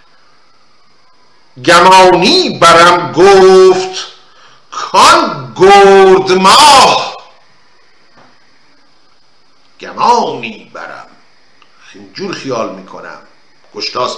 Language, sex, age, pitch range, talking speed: Persian, male, 50-69, 185-285 Hz, 55 wpm